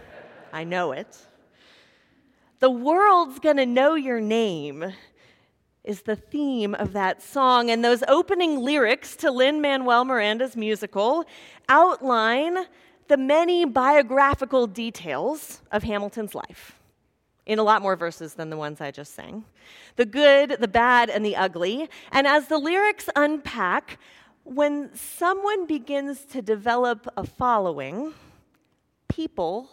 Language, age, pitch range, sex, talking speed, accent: English, 40-59, 210-300 Hz, female, 125 wpm, American